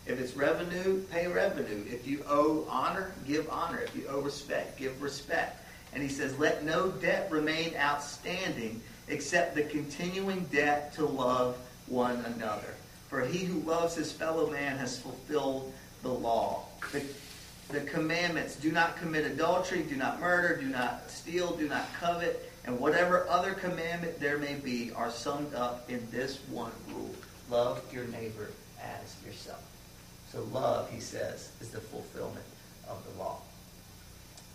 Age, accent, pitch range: 40-59, American, 120-155 Hz